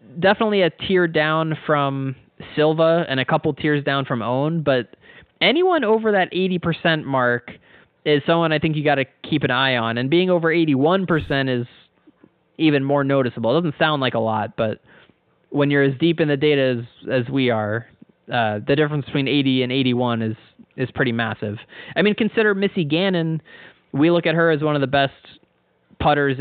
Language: English